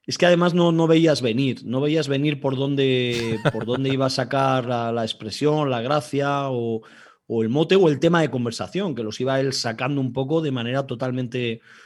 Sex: male